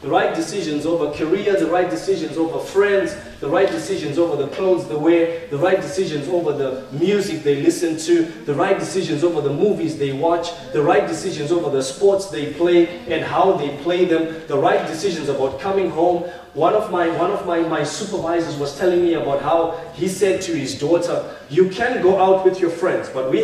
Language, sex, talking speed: English, male, 200 wpm